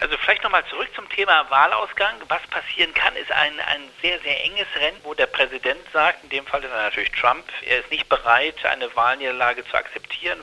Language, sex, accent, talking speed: German, male, German, 205 wpm